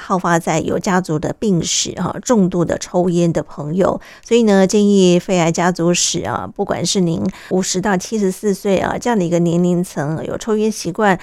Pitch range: 175-215 Hz